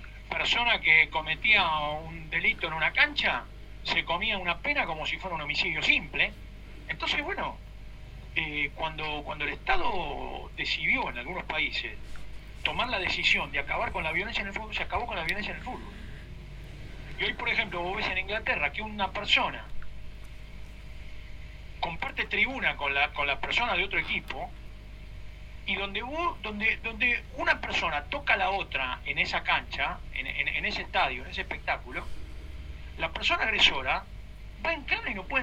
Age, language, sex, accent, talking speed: 40-59, Spanish, male, Argentinian, 165 wpm